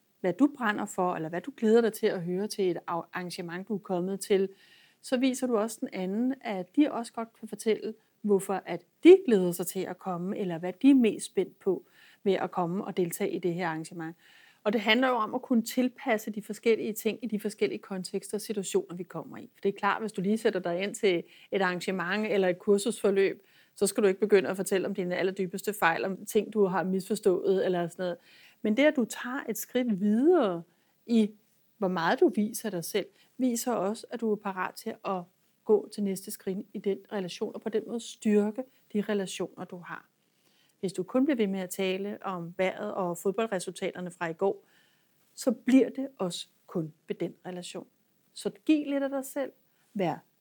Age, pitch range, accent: 30-49, 185-225 Hz, native